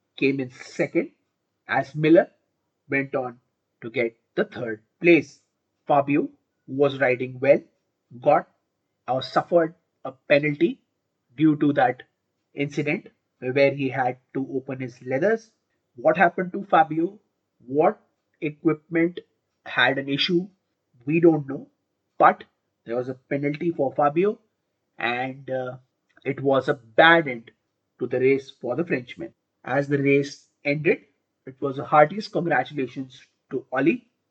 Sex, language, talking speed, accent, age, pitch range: male, Hindi, 135 wpm, native, 30-49, 130-160 Hz